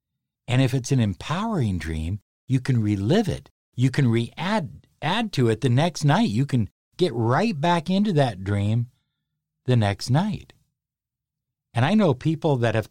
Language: English